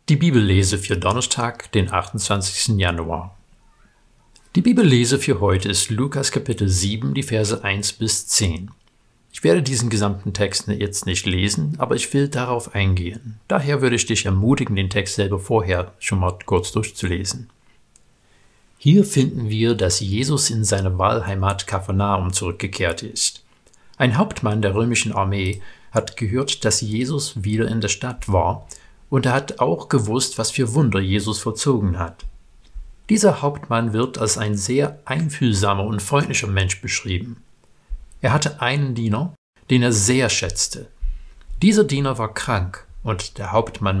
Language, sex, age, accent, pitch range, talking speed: German, male, 50-69, German, 95-130 Hz, 145 wpm